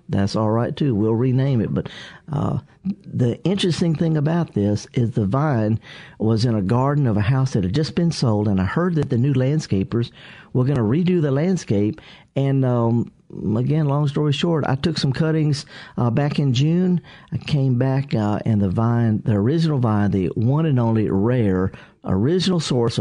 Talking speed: 190 wpm